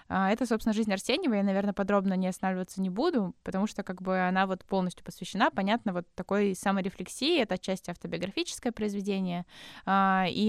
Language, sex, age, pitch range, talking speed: Russian, female, 20-39, 185-210 Hz, 160 wpm